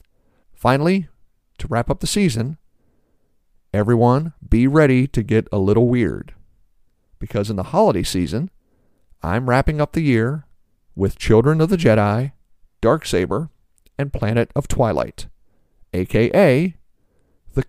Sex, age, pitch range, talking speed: male, 50-69, 105-150 Hz, 120 wpm